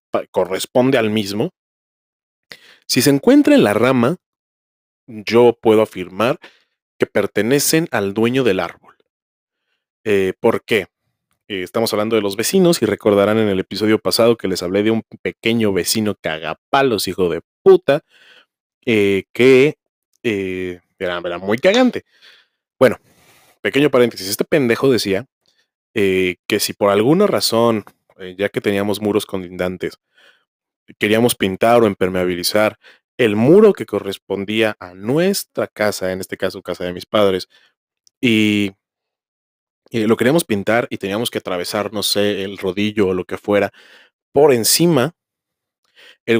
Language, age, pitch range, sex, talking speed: Spanish, 30-49, 95-120 Hz, male, 140 wpm